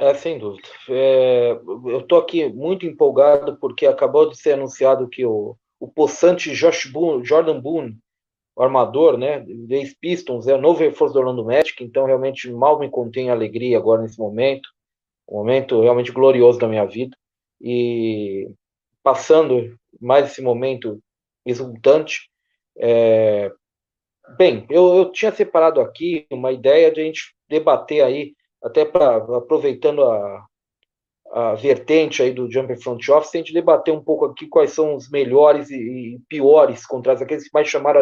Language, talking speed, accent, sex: Portuguese, 160 wpm, Brazilian, male